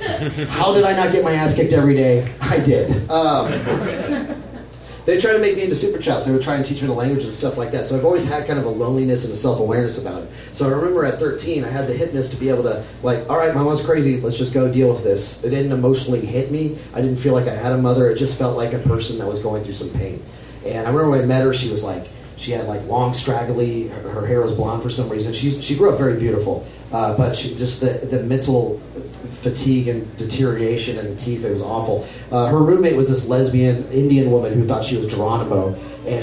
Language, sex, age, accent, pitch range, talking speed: English, male, 30-49, American, 120-145 Hz, 255 wpm